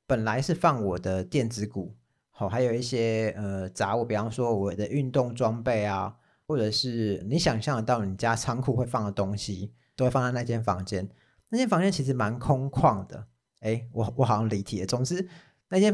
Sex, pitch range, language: male, 105-135 Hz, Chinese